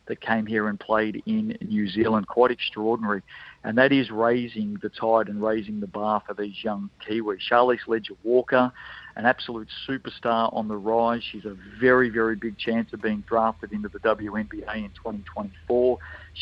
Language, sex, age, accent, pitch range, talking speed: English, male, 50-69, Australian, 105-125 Hz, 170 wpm